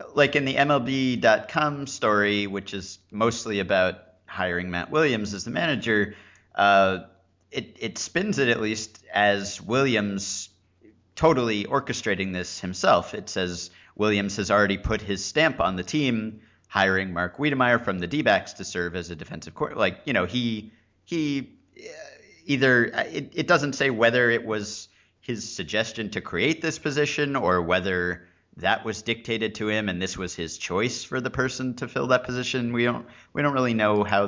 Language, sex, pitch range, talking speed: English, male, 90-120 Hz, 170 wpm